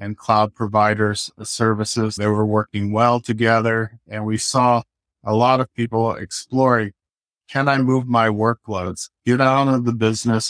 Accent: American